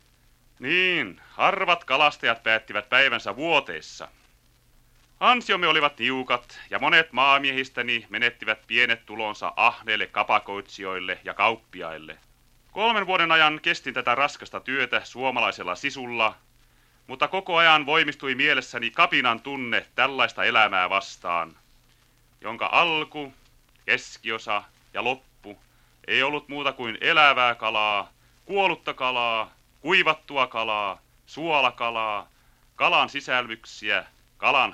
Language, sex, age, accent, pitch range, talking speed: Finnish, male, 30-49, native, 110-145 Hz, 100 wpm